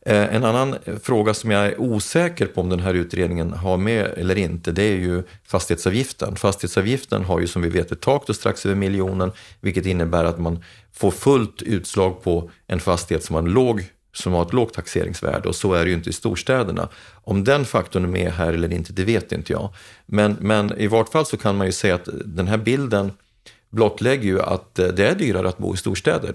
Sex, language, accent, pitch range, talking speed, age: male, Swedish, native, 90-110 Hz, 215 wpm, 40-59